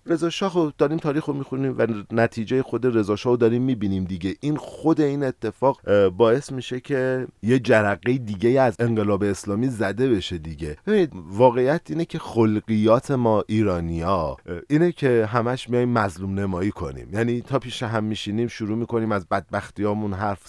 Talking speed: 160 wpm